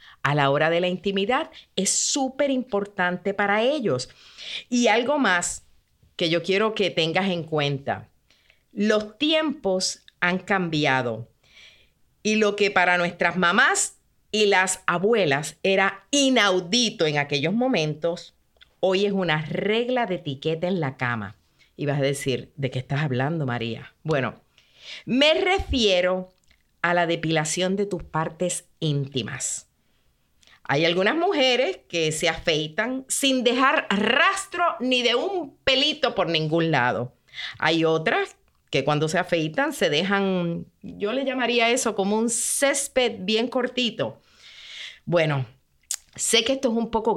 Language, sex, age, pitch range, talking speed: Spanish, female, 50-69, 155-240 Hz, 135 wpm